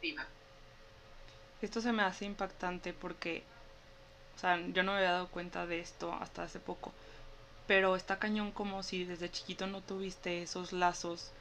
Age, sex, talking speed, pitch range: 20-39, female, 160 wpm, 175-200 Hz